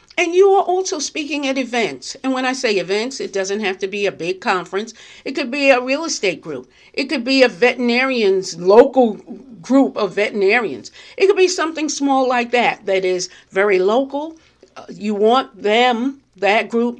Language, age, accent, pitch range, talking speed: English, 50-69, American, 195-265 Hz, 185 wpm